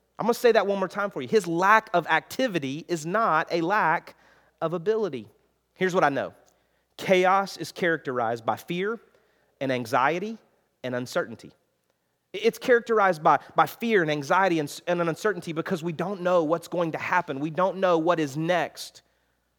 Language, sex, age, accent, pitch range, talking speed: English, male, 30-49, American, 125-175 Hz, 175 wpm